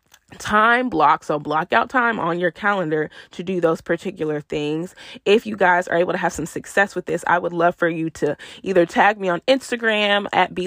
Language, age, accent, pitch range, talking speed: English, 20-39, American, 160-190 Hz, 215 wpm